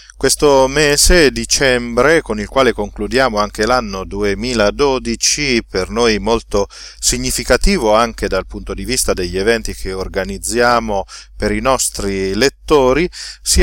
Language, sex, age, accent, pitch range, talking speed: Italian, male, 40-59, native, 100-130 Hz, 125 wpm